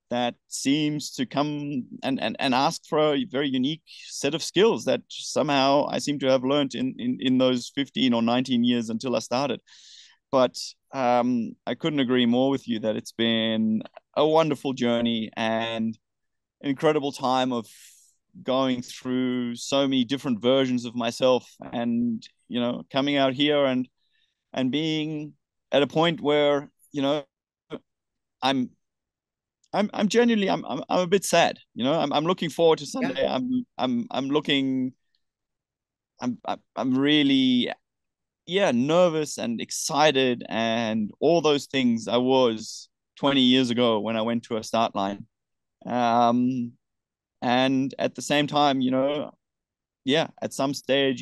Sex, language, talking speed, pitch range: male, English, 155 wpm, 120-145 Hz